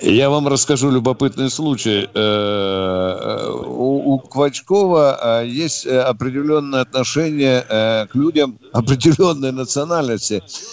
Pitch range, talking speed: 125-180 Hz, 100 wpm